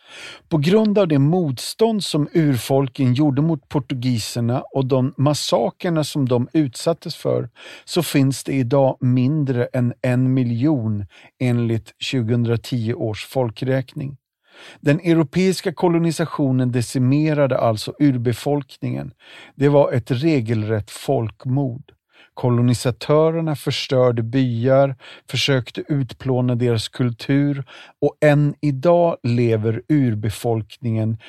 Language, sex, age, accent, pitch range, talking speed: Swedish, male, 50-69, native, 120-145 Hz, 100 wpm